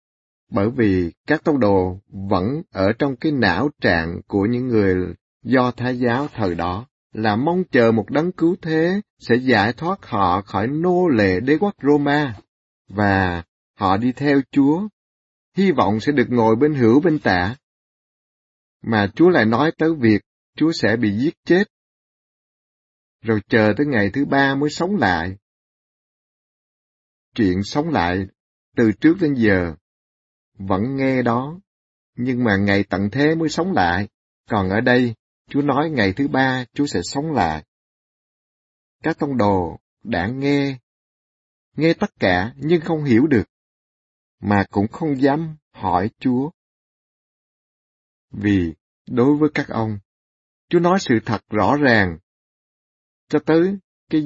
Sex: male